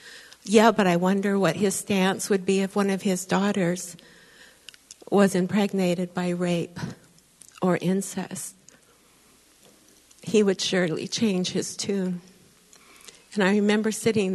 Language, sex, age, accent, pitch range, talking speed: English, female, 60-79, American, 185-215 Hz, 125 wpm